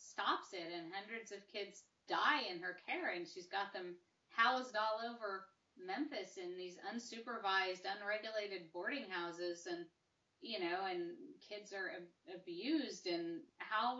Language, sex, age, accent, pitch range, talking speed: English, female, 30-49, American, 185-245 Hz, 140 wpm